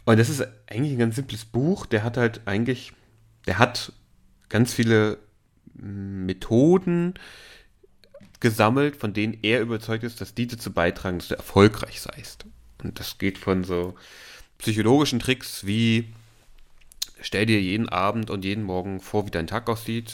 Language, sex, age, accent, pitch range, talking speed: German, male, 30-49, German, 95-115 Hz, 150 wpm